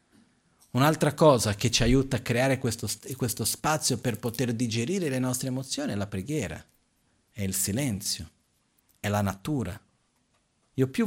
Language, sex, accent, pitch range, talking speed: Italian, male, native, 105-140 Hz, 145 wpm